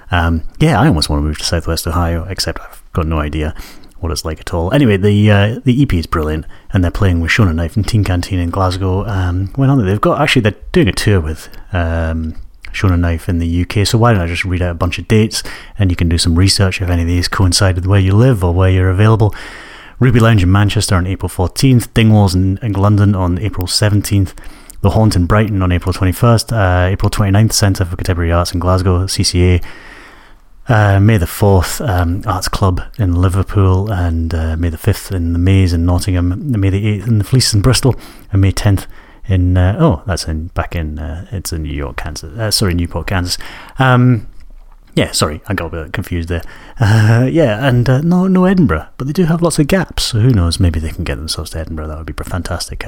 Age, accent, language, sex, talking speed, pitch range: 30-49, British, English, male, 225 wpm, 85-105 Hz